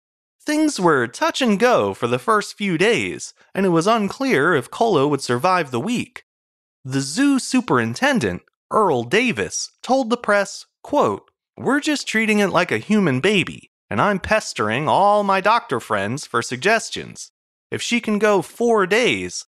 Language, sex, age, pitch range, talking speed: English, male, 30-49, 145-230 Hz, 160 wpm